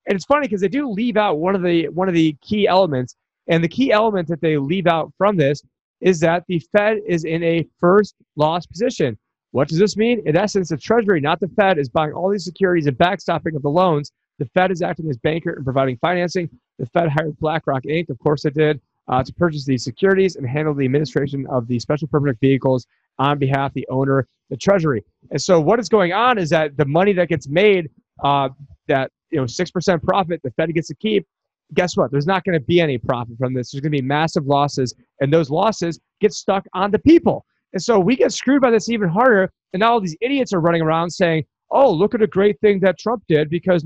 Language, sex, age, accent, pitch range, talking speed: English, male, 30-49, American, 150-200 Hz, 240 wpm